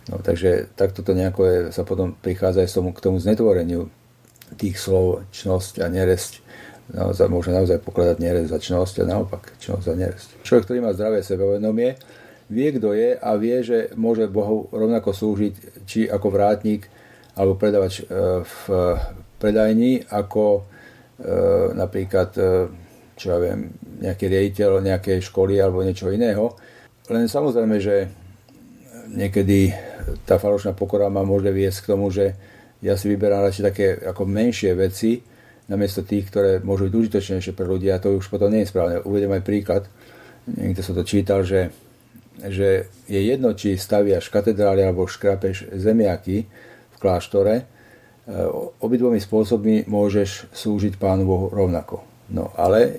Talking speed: 145 wpm